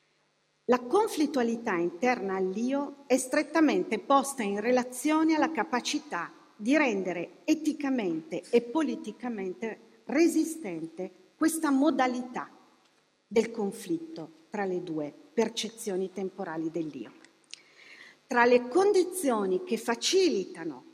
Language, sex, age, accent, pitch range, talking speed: Italian, female, 40-59, native, 195-305 Hz, 90 wpm